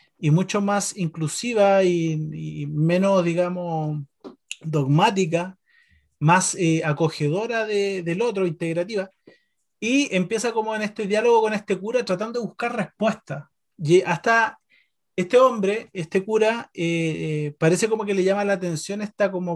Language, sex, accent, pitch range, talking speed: Spanish, male, Argentinian, 175-220 Hz, 140 wpm